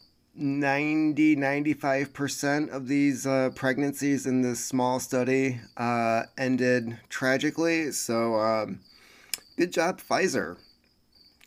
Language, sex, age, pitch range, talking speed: English, male, 30-49, 105-140 Hz, 90 wpm